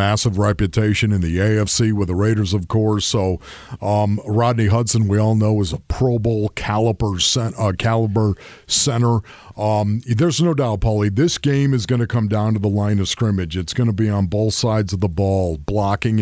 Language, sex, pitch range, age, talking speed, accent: English, male, 105-140 Hz, 50-69, 195 wpm, American